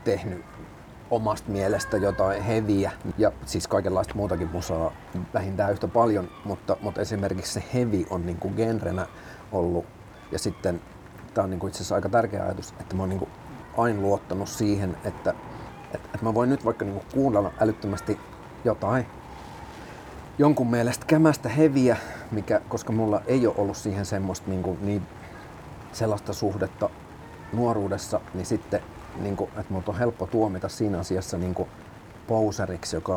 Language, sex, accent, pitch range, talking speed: Finnish, male, native, 95-110 Hz, 145 wpm